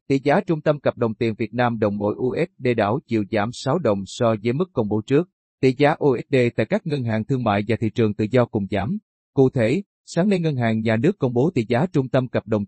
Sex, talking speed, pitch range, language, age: male, 260 wpm, 115-140 Hz, Vietnamese, 30-49